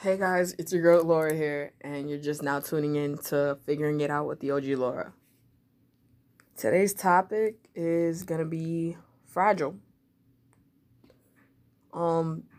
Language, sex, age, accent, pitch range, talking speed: English, female, 20-39, American, 145-180 Hz, 135 wpm